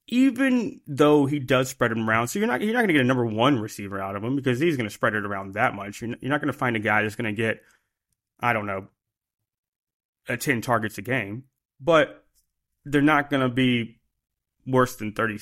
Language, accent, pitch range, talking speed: English, American, 110-150 Hz, 235 wpm